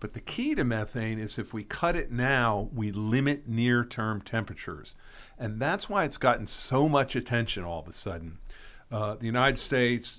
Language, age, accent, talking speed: English, 50-69, American, 185 wpm